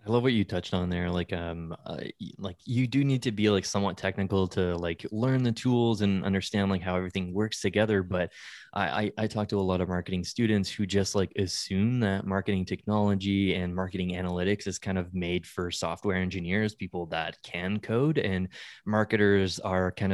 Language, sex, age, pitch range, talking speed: English, male, 20-39, 90-105 Hz, 200 wpm